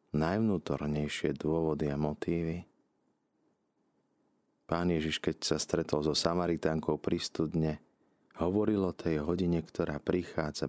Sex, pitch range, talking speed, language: male, 75-85 Hz, 100 wpm, Slovak